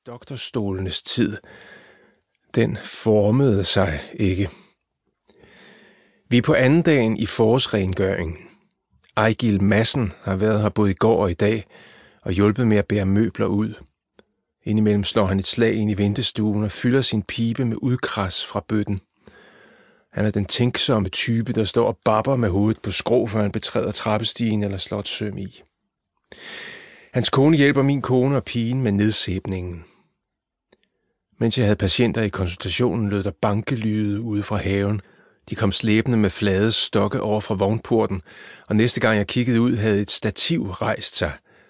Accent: native